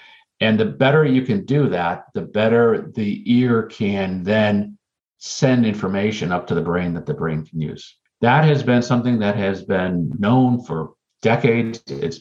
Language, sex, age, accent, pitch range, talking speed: English, male, 50-69, American, 90-115 Hz, 170 wpm